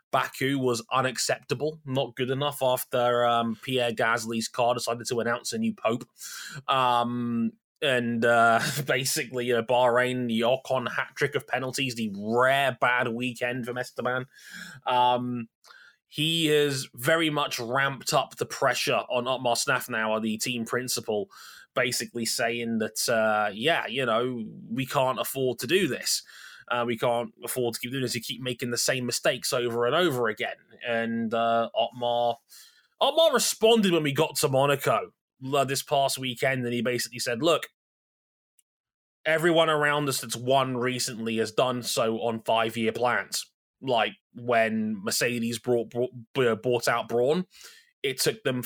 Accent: British